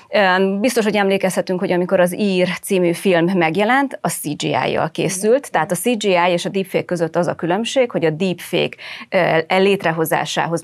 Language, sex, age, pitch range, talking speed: Hungarian, female, 30-49, 160-205 Hz, 150 wpm